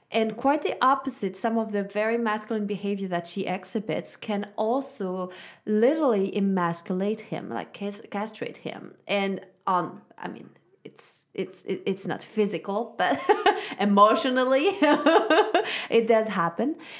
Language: English